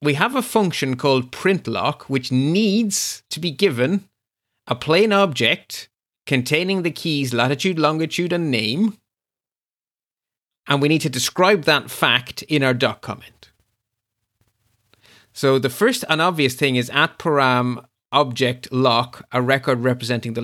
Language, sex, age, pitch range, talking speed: English, male, 30-49, 120-155 Hz, 140 wpm